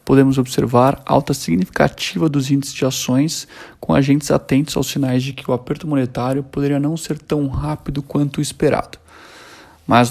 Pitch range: 130-145 Hz